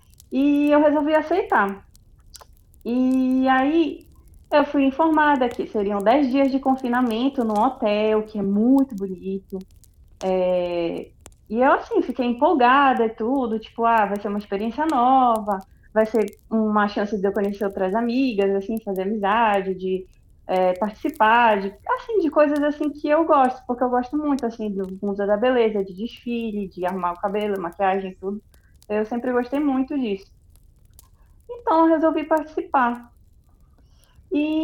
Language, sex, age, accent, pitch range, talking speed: Portuguese, female, 20-39, Brazilian, 205-280 Hz, 150 wpm